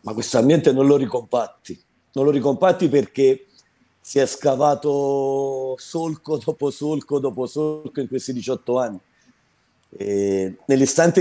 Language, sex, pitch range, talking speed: Italian, male, 140-175 Hz, 125 wpm